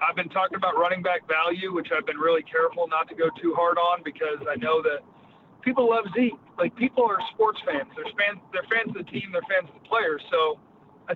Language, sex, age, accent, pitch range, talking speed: English, male, 40-59, American, 165-205 Hz, 230 wpm